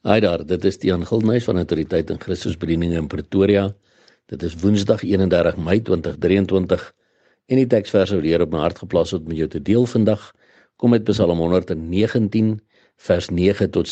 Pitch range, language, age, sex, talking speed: 85-110 Hz, English, 60-79, male, 180 wpm